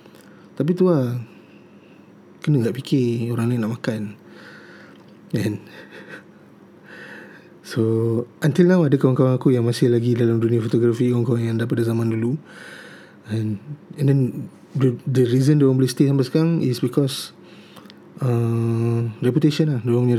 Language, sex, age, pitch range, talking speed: Malay, male, 20-39, 115-140 Hz, 140 wpm